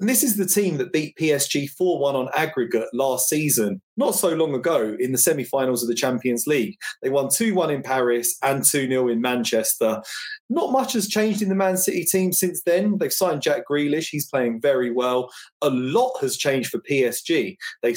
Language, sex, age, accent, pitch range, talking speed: English, male, 30-49, British, 130-205 Hz, 205 wpm